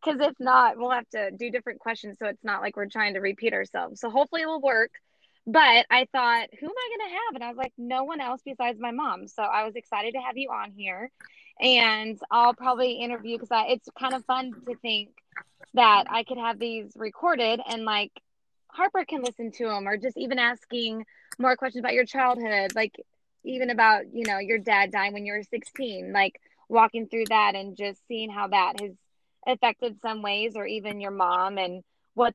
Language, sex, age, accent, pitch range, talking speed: English, female, 20-39, American, 210-255 Hz, 215 wpm